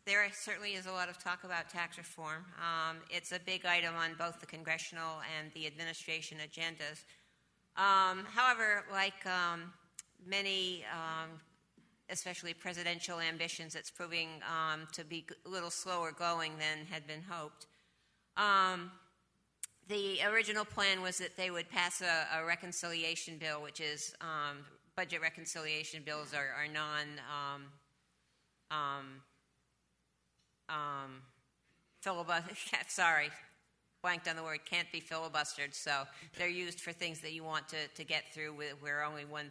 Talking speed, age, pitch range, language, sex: 145 wpm, 50-69, 150-175 Hz, English, female